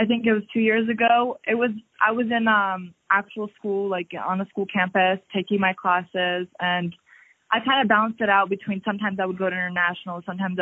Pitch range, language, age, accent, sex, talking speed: 175-200 Hz, English, 20-39, American, female, 215 wpm